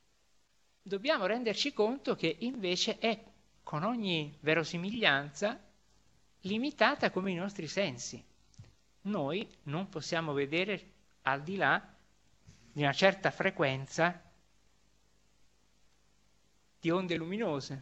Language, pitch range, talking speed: Italian, 140-195 Hz, 95 wpm